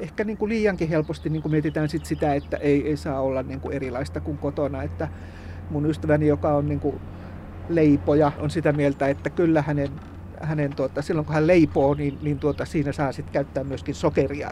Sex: male